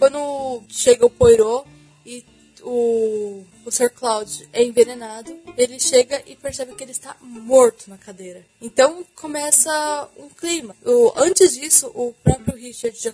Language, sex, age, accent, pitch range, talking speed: Portuguese, female, 10-29, Brazilian, 235-335 Hz, 145 wpm